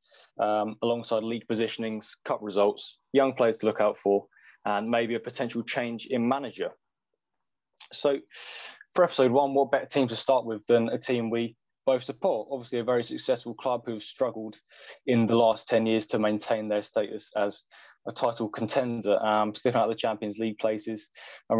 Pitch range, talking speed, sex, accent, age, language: 110-125 Hz, 180 wpm, male, British, 20-39, English